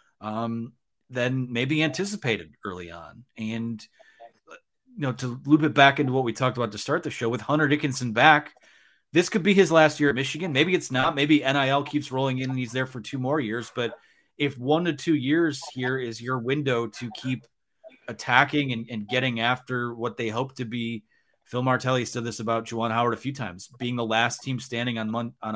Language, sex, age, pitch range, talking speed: English, male, 30-49, 115-140 Hz, 210 wpm